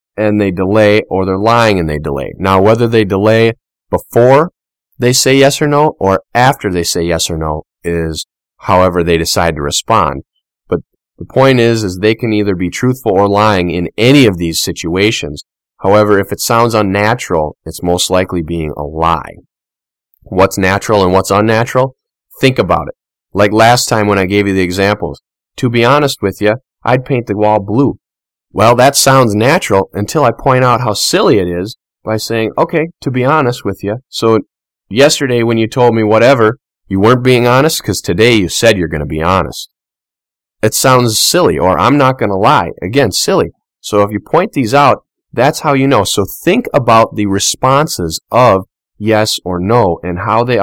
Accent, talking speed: American, 190 wpm